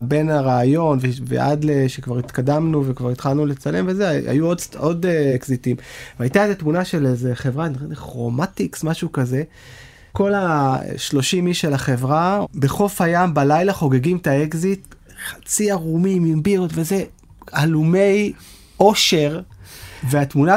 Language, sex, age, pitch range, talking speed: Hebrew, male, 30-49, 140-185 Hz, 125 wpm